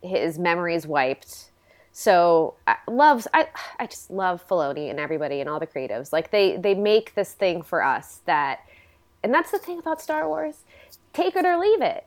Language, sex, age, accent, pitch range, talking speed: English, female, 20-39, American, 170-220 Hz, 185 wpm